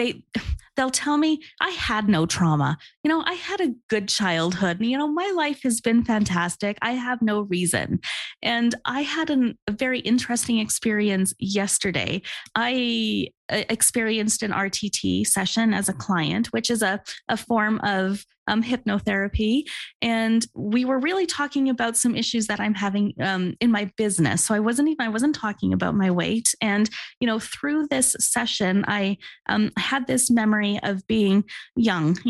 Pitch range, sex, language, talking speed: 200-240 Hz, female, English, 165 wpm